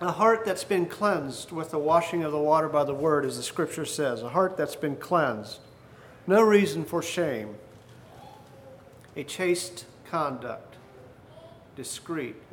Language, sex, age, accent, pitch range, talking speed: English, male, 50-69, American, 135-180 Hz, 150 wpm